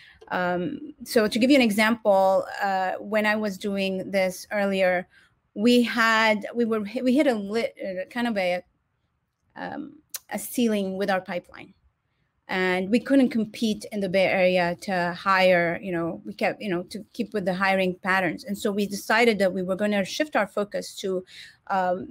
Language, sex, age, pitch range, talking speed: English, female, 30-49, 185-220 Hz, 180 wpm